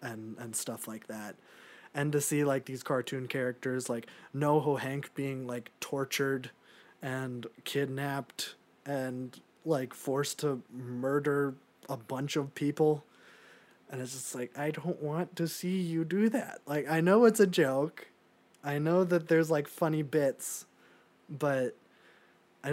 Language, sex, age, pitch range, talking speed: English, male, 20-39, 125-150 Hz, 150 wpm